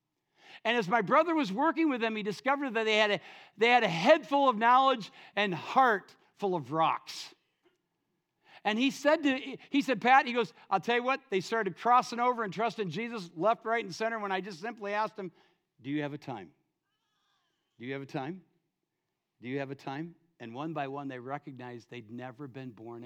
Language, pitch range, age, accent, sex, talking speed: English, 155-240 Hz, 60-79, American, male, 210 wpm